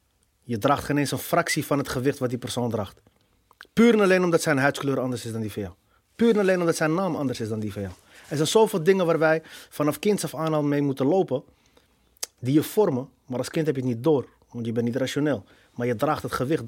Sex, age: male, 30-49